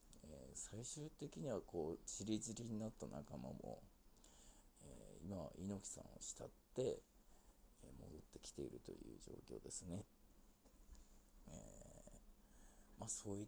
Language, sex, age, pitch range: Japanese, male, 50-69, 90-105 Hz